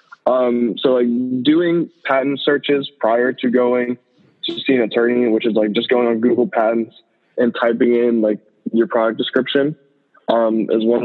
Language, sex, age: English, male, 20-39